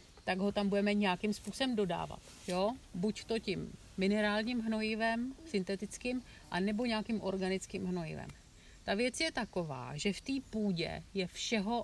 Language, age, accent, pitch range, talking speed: Czech, 70-89, native, 185-220 Hz, 135 wpm